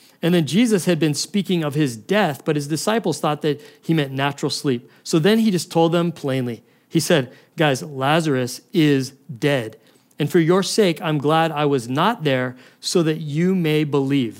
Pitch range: 135-165 Hz